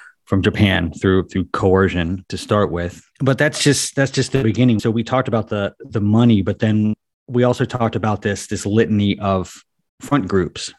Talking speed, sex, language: 190 wpm, male, English